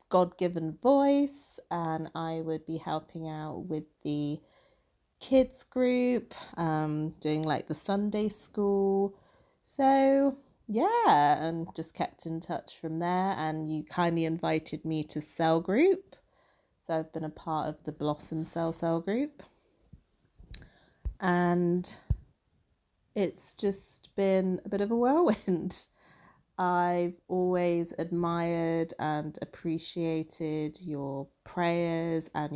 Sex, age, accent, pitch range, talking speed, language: female, 30-49, British, 155-185 Hz, 115 wpm, English